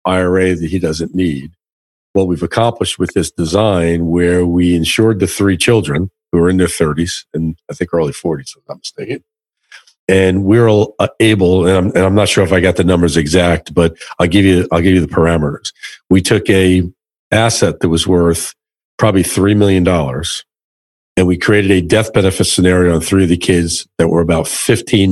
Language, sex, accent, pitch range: English, male, American, 85-105 Hz